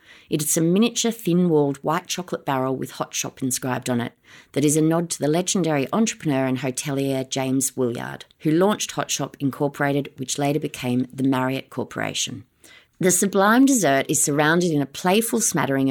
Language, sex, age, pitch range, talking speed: English, female, 30-49, 130-165 Hz, 170 wpm